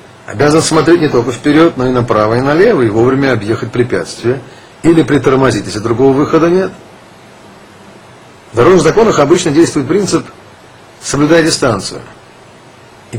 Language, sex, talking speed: Russian, male, 130 wpm